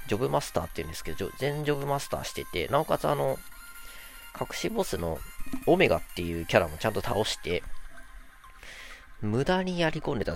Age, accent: 40-59, native